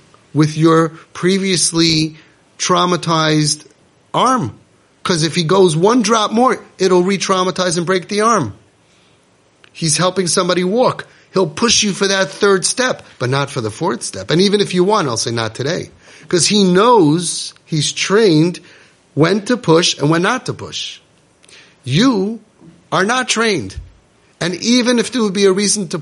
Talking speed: 160 wpm